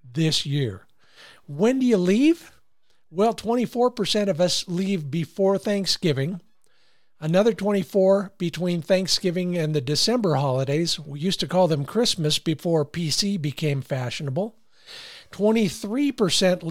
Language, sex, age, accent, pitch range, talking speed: English, male, 50-69, American, 145-190 Hz, 115 wpm